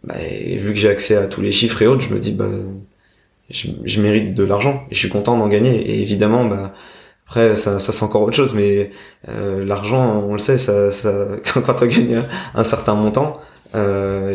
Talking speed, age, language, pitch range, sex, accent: 230 wpm, 20-39, French, 100-120 Hz, male, French